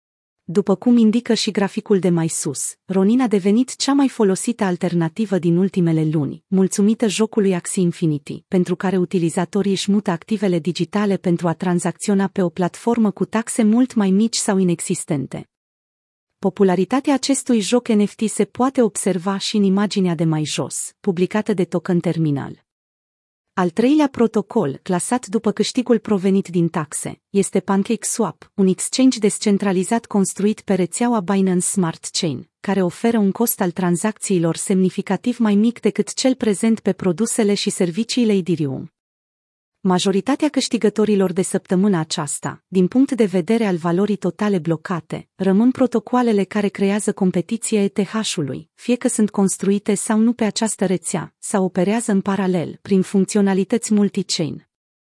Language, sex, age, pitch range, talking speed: Romanian, female, 30-49, 180-220 Hz, 145 wpm